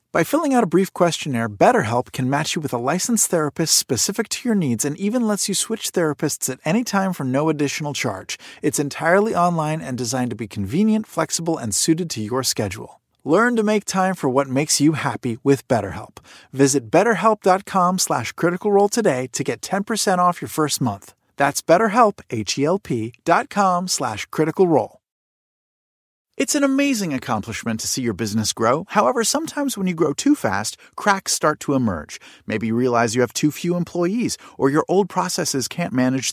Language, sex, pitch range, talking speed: English, male, 130-190 Hz, 180 wpm